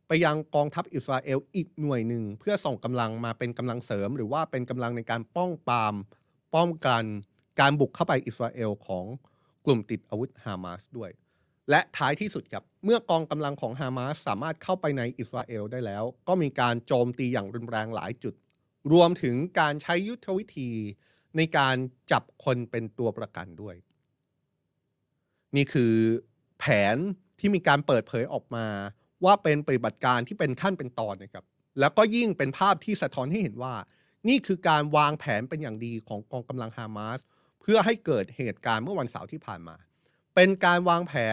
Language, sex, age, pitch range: Thai, male, 30-49, 115-160 Hz